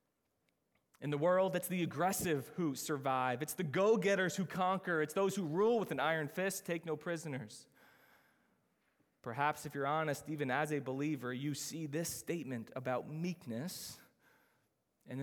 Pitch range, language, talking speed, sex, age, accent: 135-165 Hz, English, 155 wpm, male, 20-39, American